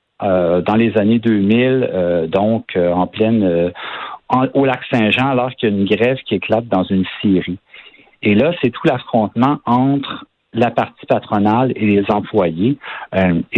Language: French